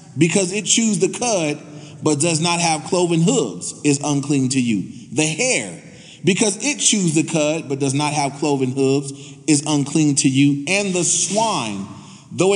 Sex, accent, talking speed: male, American, 170 wpm